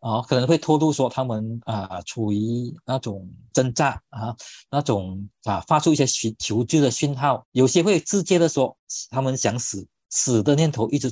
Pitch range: 110-145 Hz